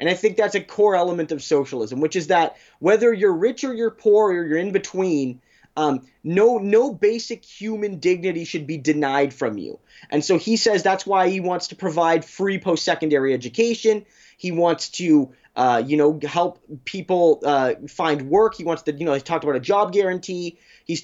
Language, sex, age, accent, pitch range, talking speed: English, male, 20-39, American, 155-210 Hz, 195 wpm